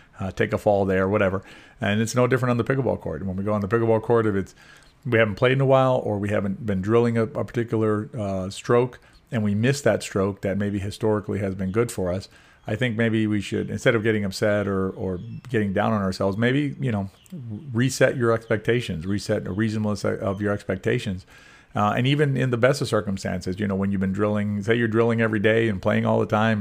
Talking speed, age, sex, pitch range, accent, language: 235 wpm, 40-59, male, 100-115 Hz, American, English